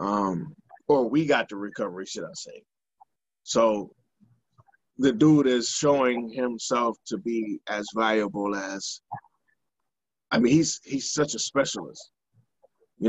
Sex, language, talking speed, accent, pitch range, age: male, English, 130 wpm, American, 110-145 Hz, 20-39